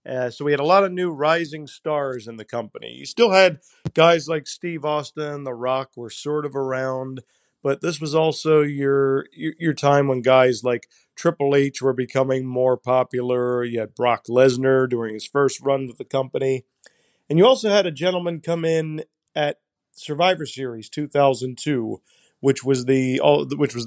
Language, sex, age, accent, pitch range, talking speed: English, male, 40-59, American, 125-155 Hz, 175 wpm